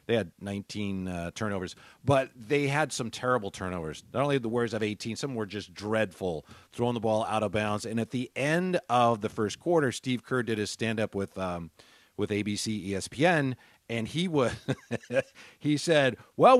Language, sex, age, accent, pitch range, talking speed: English, male, 40-59, American, 115-155 Hz, 190 wpm